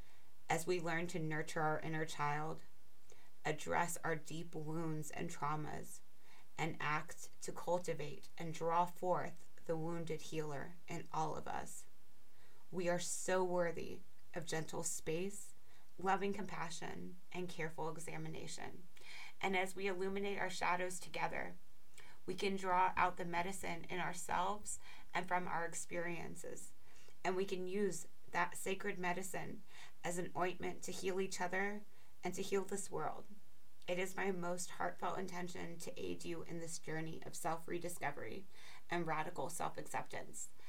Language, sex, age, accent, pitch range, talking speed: English, female, 30-49, American, 160-180 Hz, 140 wpm